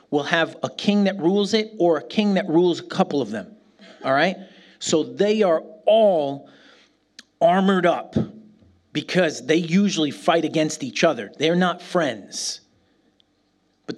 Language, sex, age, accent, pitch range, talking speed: English, male, 40-59, American, 145-190 Hz, 150 wpm